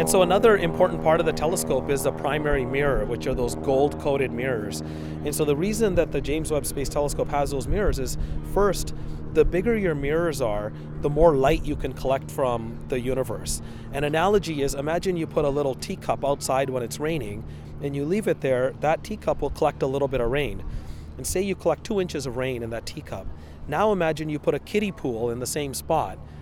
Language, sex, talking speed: Danish, male, 215 wpm